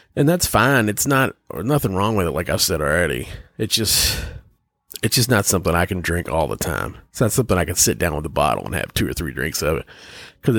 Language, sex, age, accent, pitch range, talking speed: English, male, 30-49, American, 90-120 Hz, 255 wpm